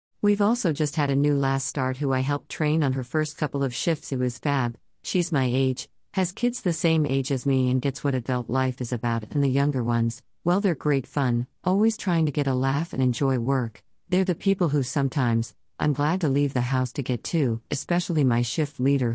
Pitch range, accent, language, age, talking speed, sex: 125-155 Hz, American, English, 50-69, 230 wpm, female